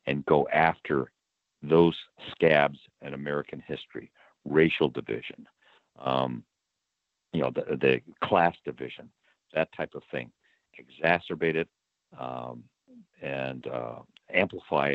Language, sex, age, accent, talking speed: English, male, 60-79, American, 110 wpm